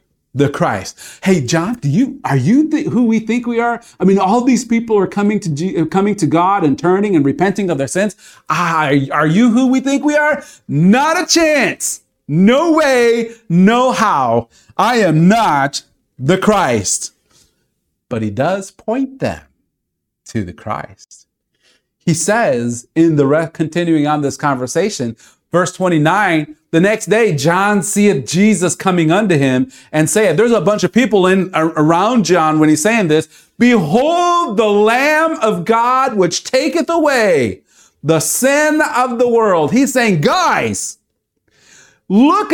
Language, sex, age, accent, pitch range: Japanese, male, 40-59, American, 165-255 Hz